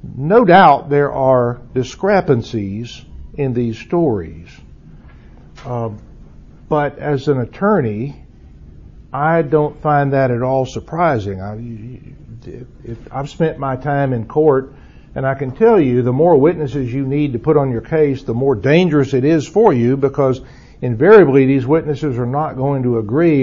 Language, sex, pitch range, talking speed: English, male, 120-155 Hz, 145 wpm